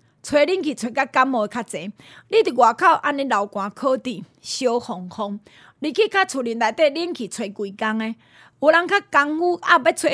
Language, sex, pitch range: Chinese, female, 225-330 Hz